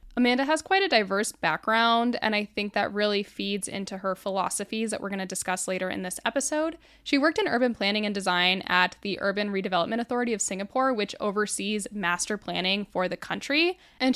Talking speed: 195 wpm